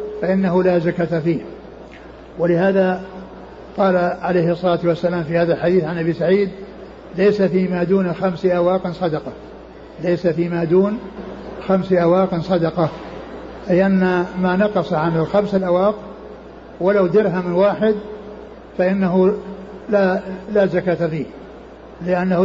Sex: male